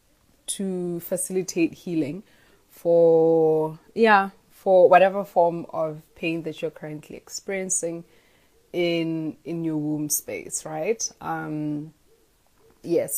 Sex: female